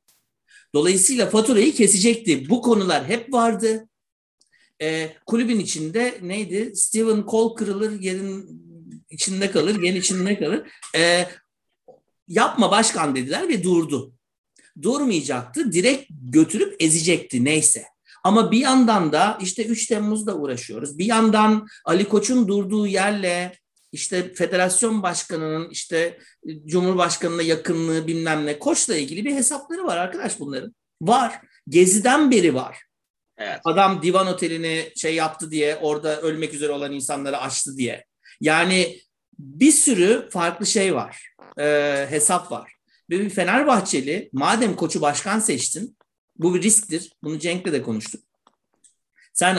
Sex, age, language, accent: male, 60-79, Turkish, native